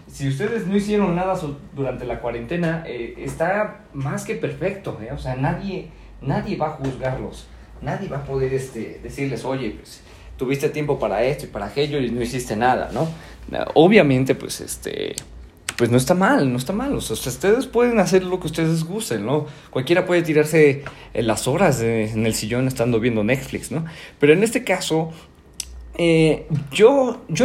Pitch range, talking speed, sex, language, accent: 120-160 Hz, 180 wpm, male, Spanish, Mexican